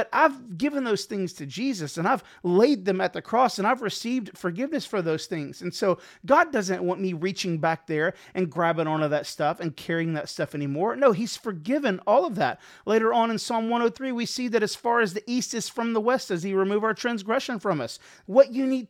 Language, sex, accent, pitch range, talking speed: English, male, American, 180-245 Hz, 230 wpm